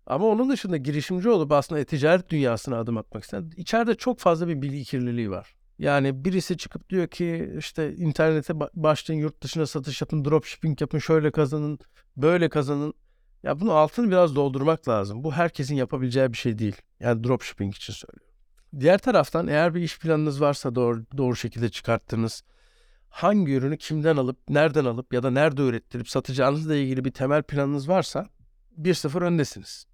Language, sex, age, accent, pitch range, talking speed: Turkish, male, 60-79, native, 130-160 Hz, 170 wpm